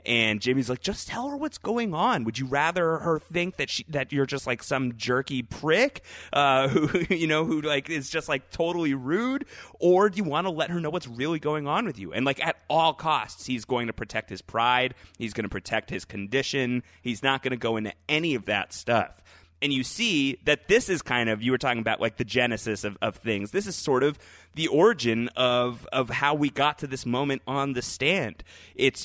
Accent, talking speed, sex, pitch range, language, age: American, 225 wpm, male, 105-145 Hz, English, 30-49